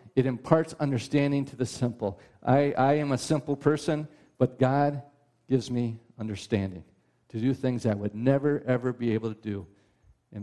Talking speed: 165 wpm